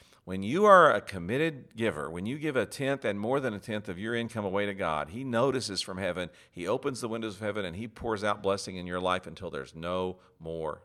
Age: 50-69